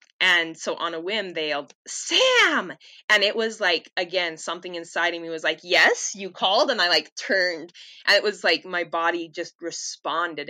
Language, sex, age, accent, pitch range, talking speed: English, female, 20-39, American, 165-220 Hz, 195 wpm